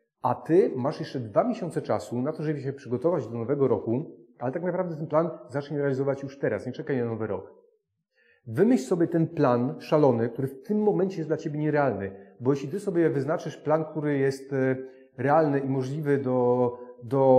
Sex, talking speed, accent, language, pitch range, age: male, 190 wpm, native, Polish, 125-170 Hz, 40-59